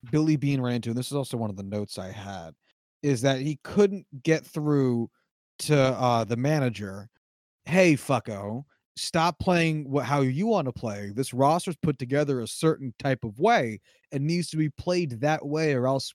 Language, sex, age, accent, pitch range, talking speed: English, male, 30-49, American, 125-160 Hz, 195 wpm